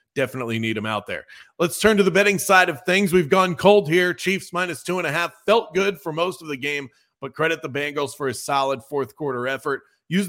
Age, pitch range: 40-59, 140-180 Hz